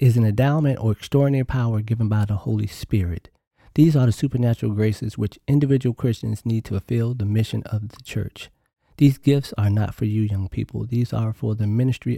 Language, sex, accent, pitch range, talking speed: English, male, American, 105-130 Hz, 195 wpm